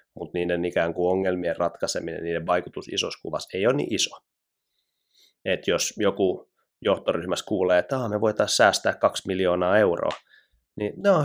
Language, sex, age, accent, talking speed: Finnish, male, 30-49, native, 145 wpm